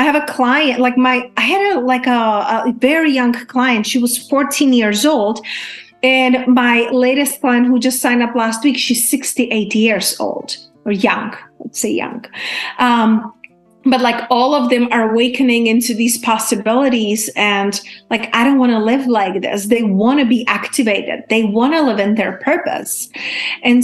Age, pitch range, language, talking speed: 30-49, 210-250 Hz, English, 180 wpm